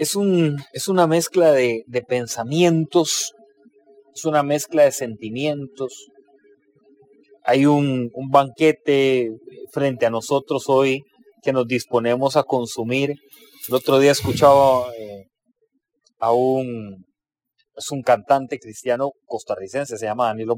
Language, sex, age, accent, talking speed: English, male, 30-49, Mexican, 120 wpm